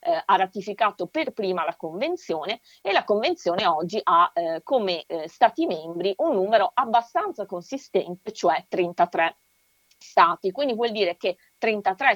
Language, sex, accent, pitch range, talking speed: Italian, female, native, 180-245 Hz, 140 wpm